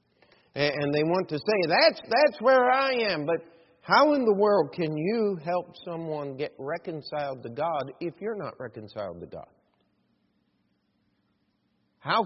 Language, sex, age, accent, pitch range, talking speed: English, male, 50-69, American, 140-200 Hz, 145 wpm